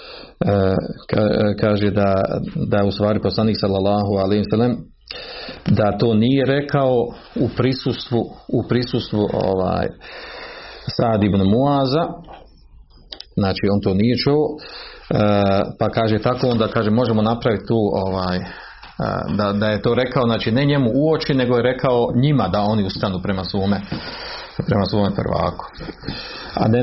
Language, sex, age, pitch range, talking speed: Croatian, male, 40-59, 100-120 Hz, 125 wpm